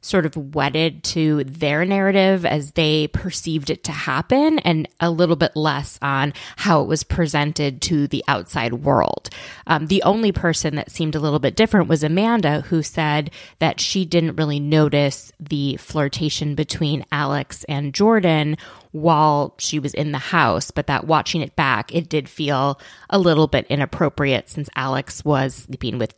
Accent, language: American, English